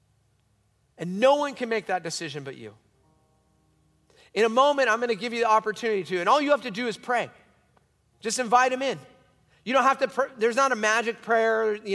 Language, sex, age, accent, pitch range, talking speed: English, male, 30-49, American, 135-195 Hz, 215 wpm